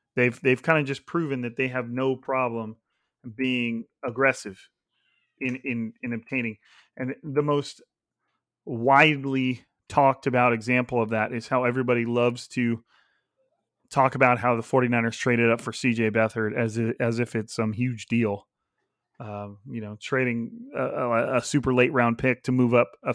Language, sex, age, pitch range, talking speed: English, male, 30-49, 120-145 Hz, 165 wpm